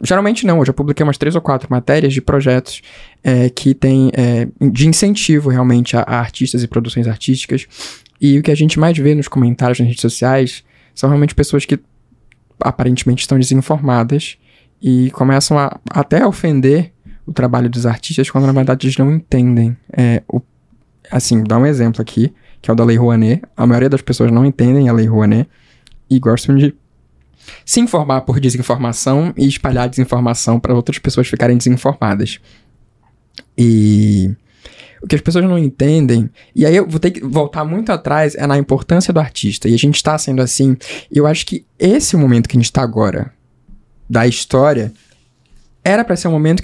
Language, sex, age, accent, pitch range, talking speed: Portuguese, male, 10-29, Brazilian, 120-150 Hz, 185 wpm